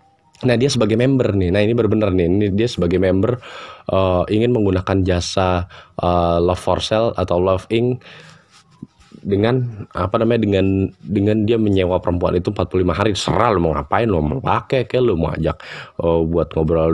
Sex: male